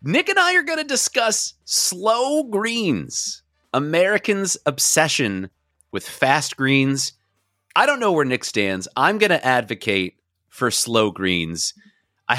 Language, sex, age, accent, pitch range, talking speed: English, male, 30-49, American, 110-175 Hz, 135 wpm